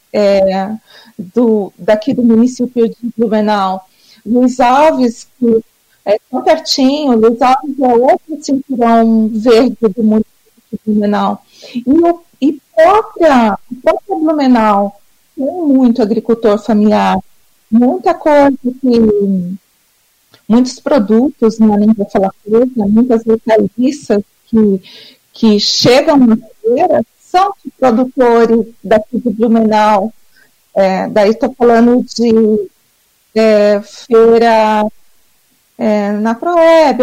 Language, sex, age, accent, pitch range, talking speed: Portuguese, female, 40-59, Brazilian, 215-265 Hz, 105 wpm